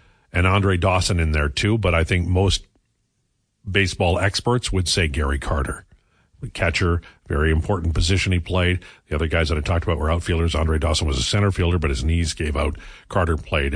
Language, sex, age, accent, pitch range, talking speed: English, male, 50-69, American, 85-110 Hz, 195 wpm